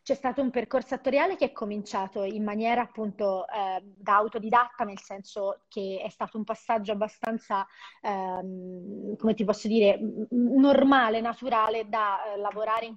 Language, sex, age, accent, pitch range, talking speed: Italian, female, 20-39, native, 200-230 Hz, 155 wpm